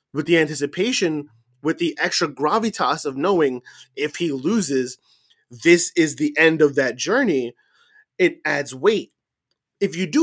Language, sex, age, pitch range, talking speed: English, male, 20-39, 140-190 Hz, 145 wpm